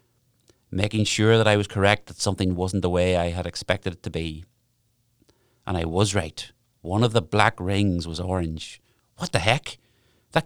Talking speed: 185 wpm